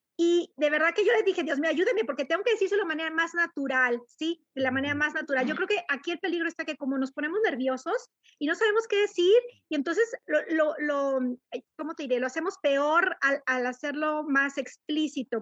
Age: 40-59